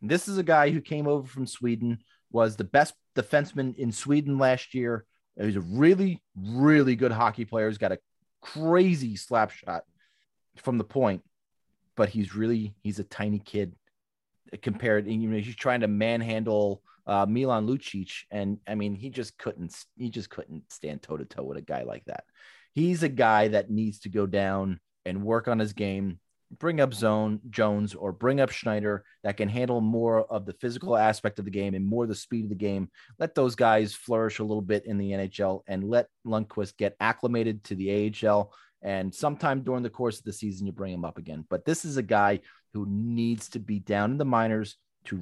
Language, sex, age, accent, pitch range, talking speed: English, male, 30-49, American, 105-125 Hz, 205 wpm